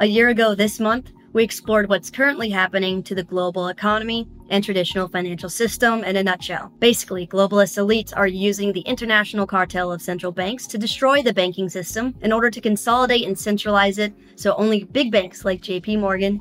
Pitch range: 190-225 Hz